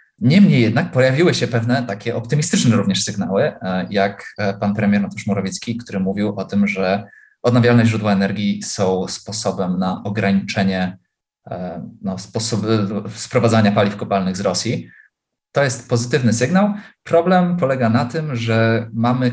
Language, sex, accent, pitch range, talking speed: Polish, male, native, 100-120 Hz, 130 wpm